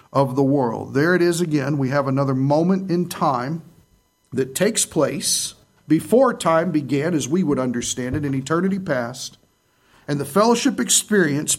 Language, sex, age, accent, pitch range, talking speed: English, male, 50-69, American, 115-165 Hz, 160 wpm